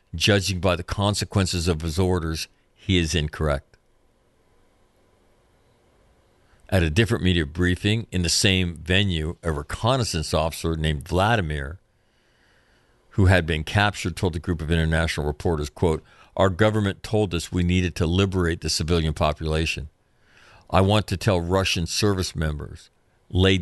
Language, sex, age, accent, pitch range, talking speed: English, male, 50-69, American, 80-95 Hz, 135 wpm